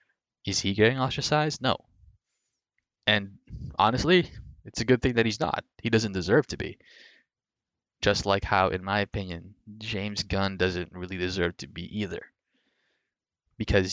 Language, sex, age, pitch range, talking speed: English, male, 20-39, 90-105 Hz, 145 wpm